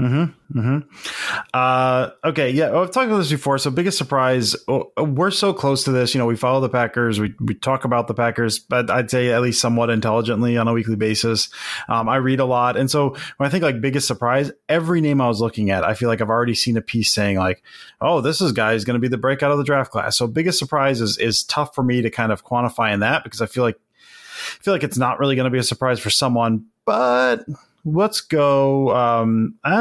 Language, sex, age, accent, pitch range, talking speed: English, male, 30-49, American, 120-160 Hz, 245 wpm